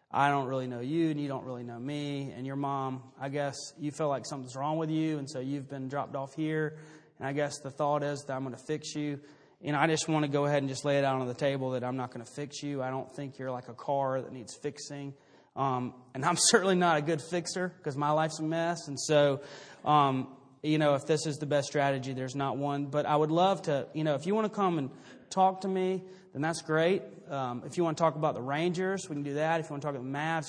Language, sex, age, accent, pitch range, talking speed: English, male, 30-49, American, 135-155 Hz, 280 wpm